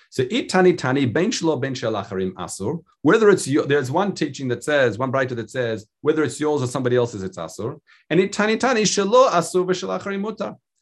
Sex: male